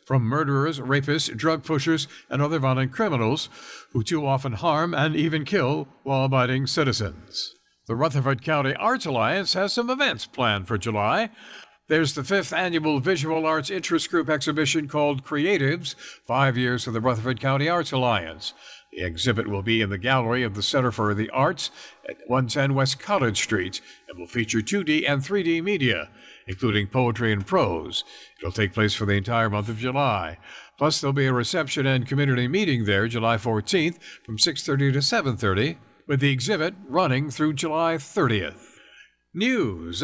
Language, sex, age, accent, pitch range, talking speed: English, male, 60-79, American, 115-160 Hz, 165 wpm